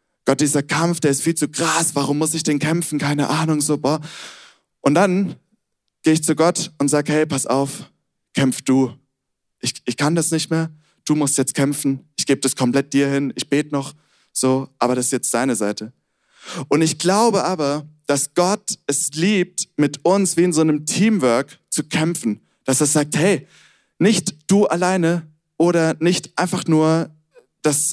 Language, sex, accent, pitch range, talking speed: German, male, German, 140-170 Hz, 185 wpm